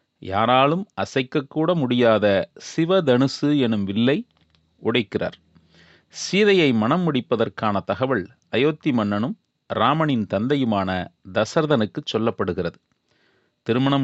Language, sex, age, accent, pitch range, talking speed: Tamil, male, 30-49, native, 110-145 Hz, 75 wpm